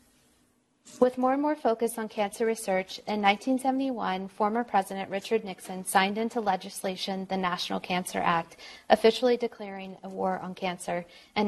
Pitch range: 185-225 Hz